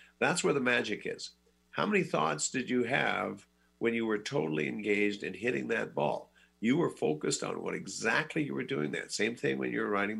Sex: male